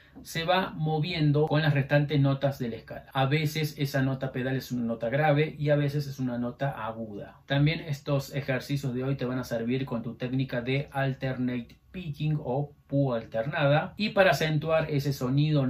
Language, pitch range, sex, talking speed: Spanish, 130-150 Hz, male, 185 wpm